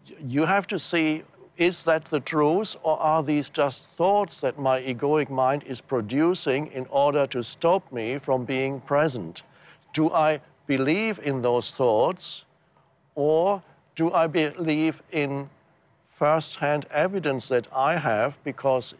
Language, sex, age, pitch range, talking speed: English, male, 60-79, 125-150 Hz, 140 wpm